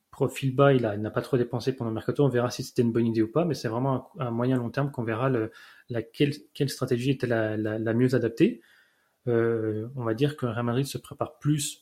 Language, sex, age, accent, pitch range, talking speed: French, male, 30-49, French, 115-140 Hz, 265 wpm